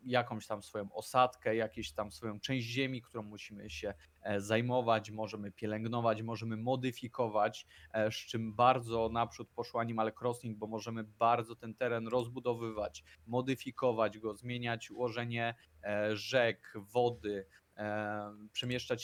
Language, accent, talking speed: Polish, native, 115 wpm